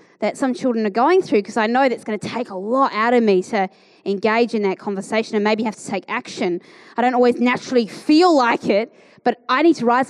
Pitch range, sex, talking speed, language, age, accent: 215-265 Hz, female, 245 wpm, English, 20-39, Australian